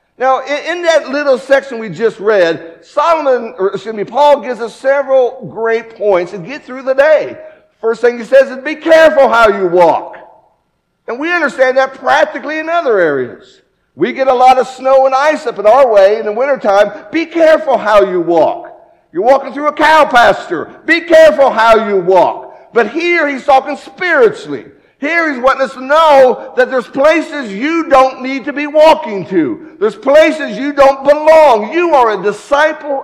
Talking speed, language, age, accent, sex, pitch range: 185 wpm, English, 60-79, American, male, 225-295 Hz